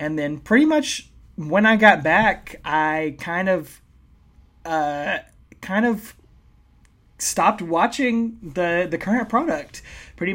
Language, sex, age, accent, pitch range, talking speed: English, male, 20-39, American, 145-170 Hz, 120 wpm